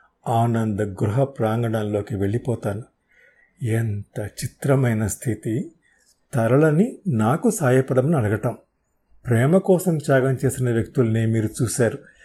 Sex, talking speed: male, 90 wpm